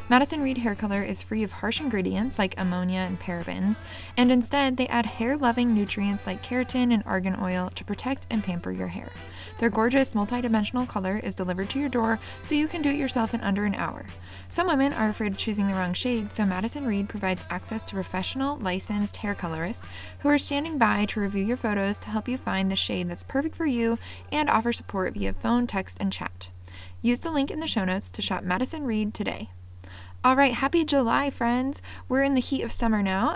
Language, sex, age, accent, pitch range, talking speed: English, female, 20-39, American, 185-255 Hz, 210 wpm